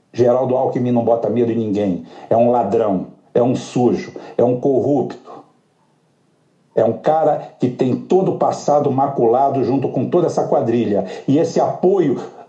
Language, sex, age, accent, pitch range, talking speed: Portuguese, male, 60-79, Brazilian, 115-170 Hz, 160 wpm